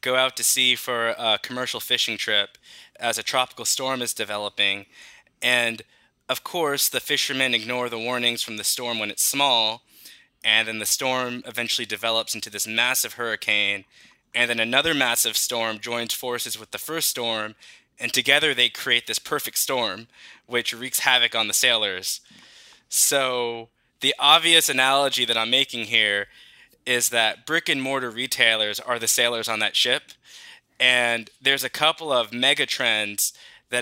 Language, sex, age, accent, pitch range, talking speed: English, male, 10-29, American, 115-135 Hz, 160 wpm